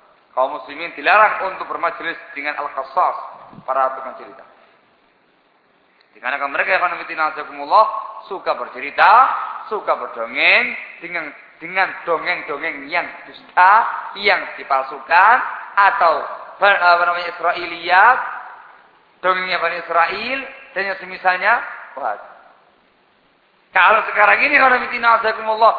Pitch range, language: 130-190 Hz, Indonesian